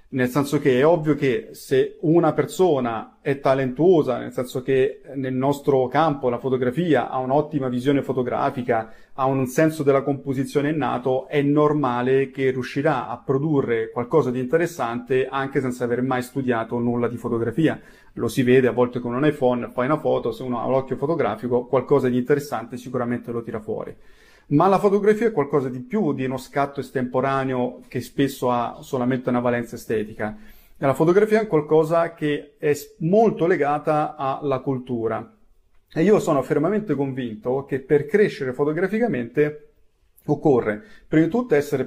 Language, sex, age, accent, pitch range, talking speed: Italian, male, 30-49, native, 125-150 Hz, 160 wpm